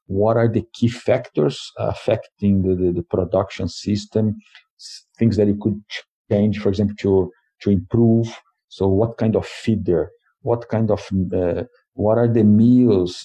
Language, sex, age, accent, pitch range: Chinese, male, 50-69, Brazilian, 95-115 Hz